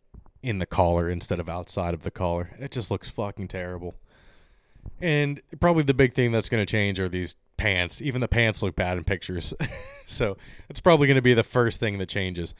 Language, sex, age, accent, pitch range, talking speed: English, male, 20-39, American, 100-140 Hz, 210 wpm